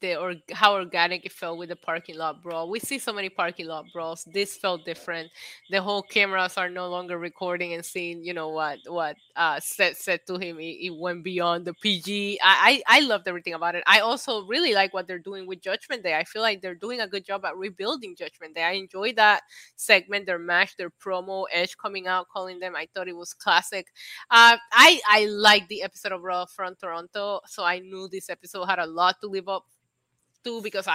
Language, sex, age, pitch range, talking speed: English, female, 20-39, 180-225 Hz, 220 wpm